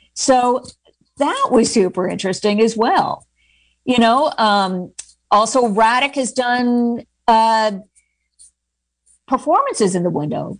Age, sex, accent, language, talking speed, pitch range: 50-69, female, American, English, 110 wpm, 195-240 Hz